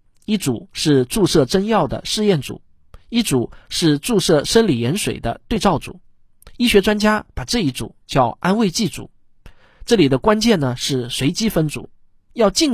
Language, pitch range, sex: Chinese, 135-210 Hz, male